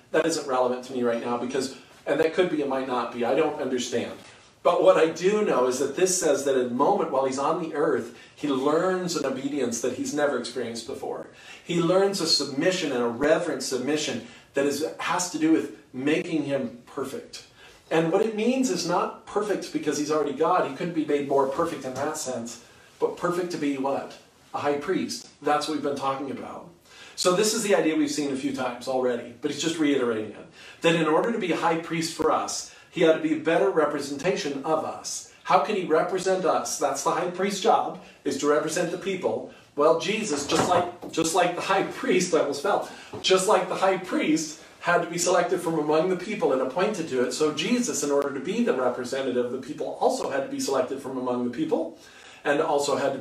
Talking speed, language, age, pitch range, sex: 225 wpm, English, 40-59, 135-180 Hz, male